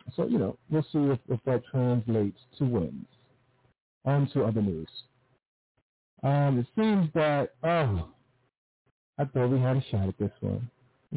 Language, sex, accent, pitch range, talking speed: English, male, American, 115-135 Hz, 160 wpm